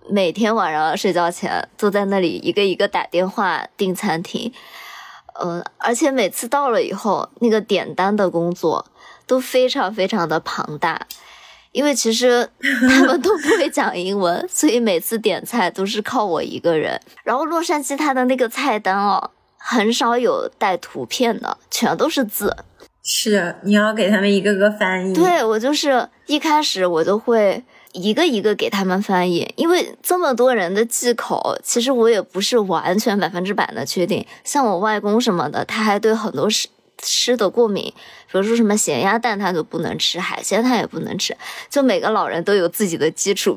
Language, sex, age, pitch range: Chinese, male, 20-39, 190-255 Hz